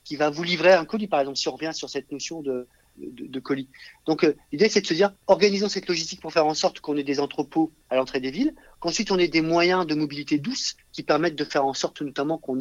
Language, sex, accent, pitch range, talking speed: French, male, French, 135-180 Hz, 255 wpm